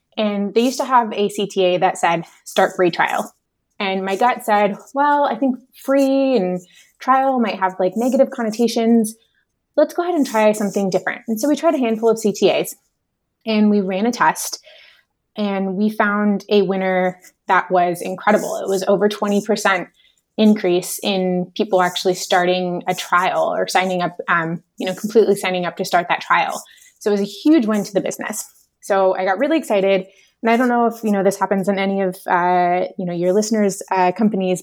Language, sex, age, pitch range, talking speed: English, female, 20-39, 185-230 Hz, 195 wpm